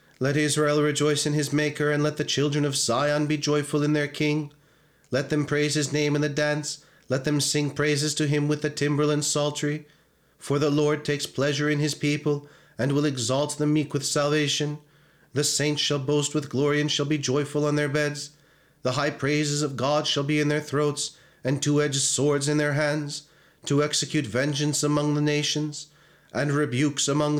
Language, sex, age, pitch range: English, male, 40-59, 145-150 Hz